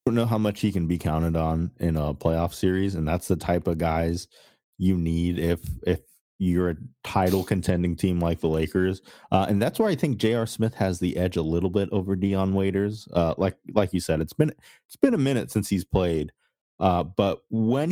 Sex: male